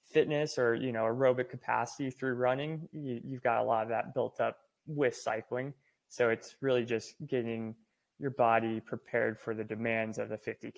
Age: 20-39